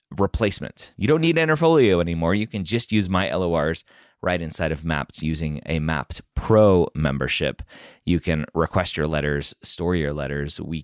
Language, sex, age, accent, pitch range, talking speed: English, male, 30-49, American, 80-110 Hz, 165 wpm